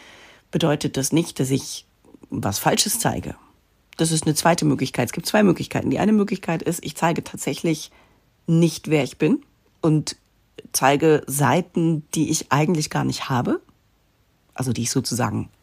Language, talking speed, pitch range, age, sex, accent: German, 155 wpm, 145-195 Hz, 40-59, female, German